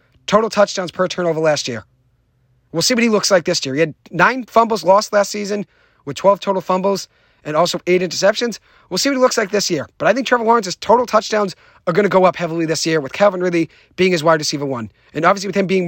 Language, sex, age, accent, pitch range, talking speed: English, male, 30-49, American, 145-205 Hz, 245 wpm